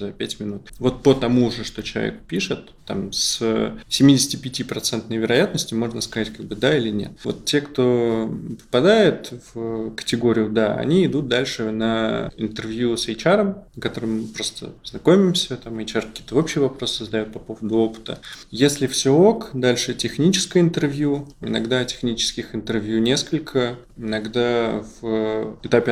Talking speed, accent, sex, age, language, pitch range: 135 wpm, native, male, 20-39, Russian, 110-130 Hz